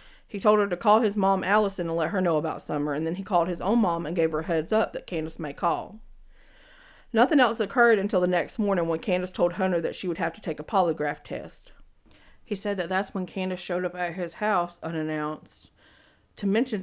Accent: American